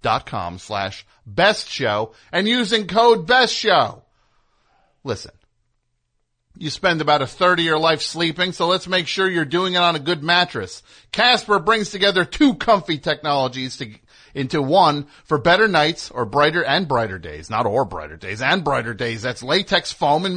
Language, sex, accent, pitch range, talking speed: English, male, American, 110-165 Hz, 175 wpm